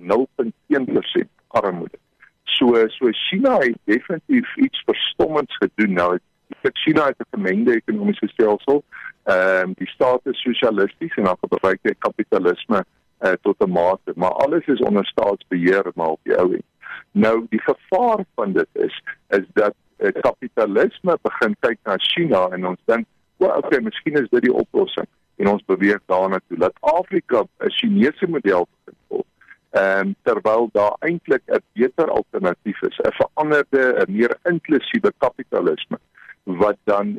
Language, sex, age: English, male, 60-79